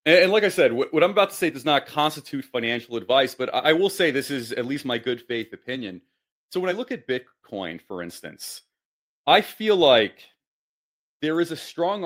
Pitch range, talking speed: 120-170 Hz, 205 wpm